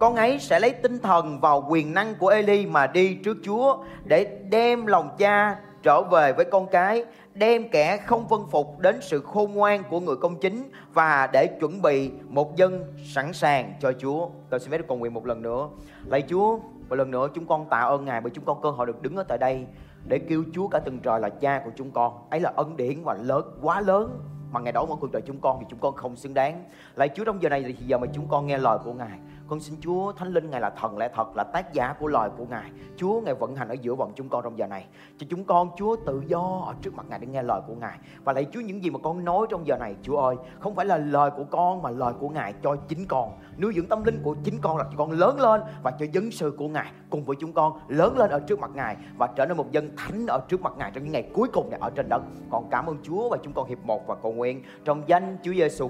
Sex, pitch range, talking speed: male, 135-190 Hz, 275 wpm